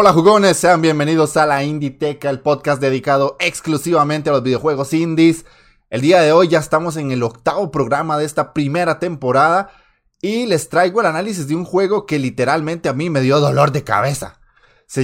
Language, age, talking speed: Spanish, 20-39, 190 wpm